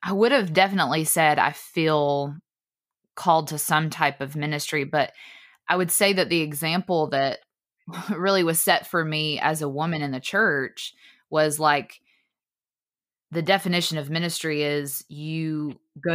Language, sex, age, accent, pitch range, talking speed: English, female, 20-39, American, 145-175 Hz, 150 wpm